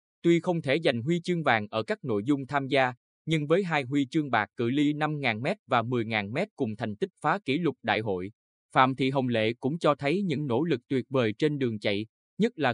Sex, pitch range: male, 110-155 Hz